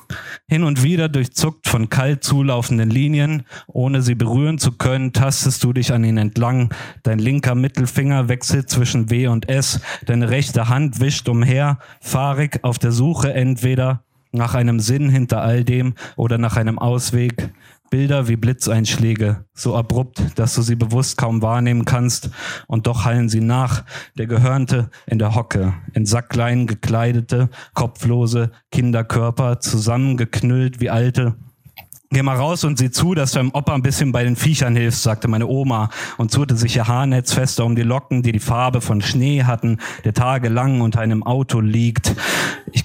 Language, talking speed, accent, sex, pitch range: German, 165 wpm, German, male, 115-135 Hz